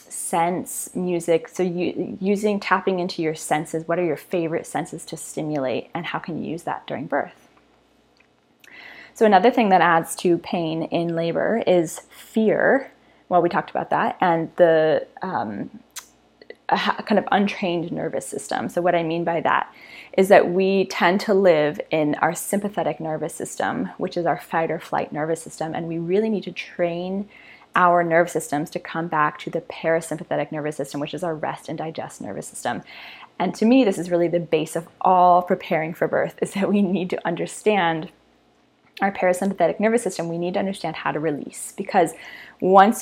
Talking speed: 180 wpm